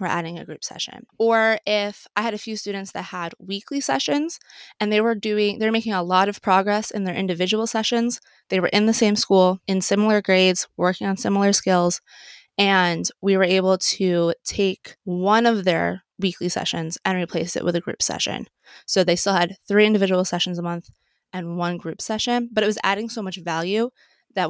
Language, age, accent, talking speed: English, 20-39, American, 200 wpm